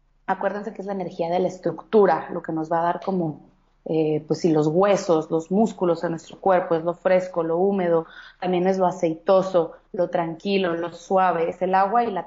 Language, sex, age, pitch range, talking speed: Spanish, female, 30-49, 175-220 Hz, 210 wpm